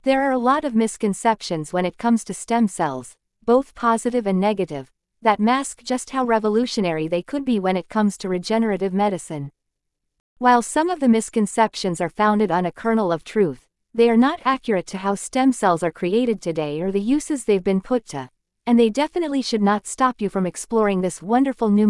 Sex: female